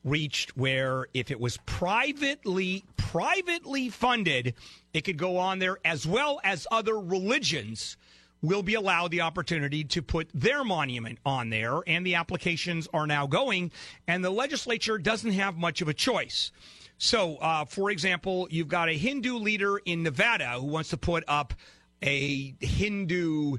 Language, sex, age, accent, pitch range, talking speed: English, male, 40-59, American, 115-180 Hz, 160 wpm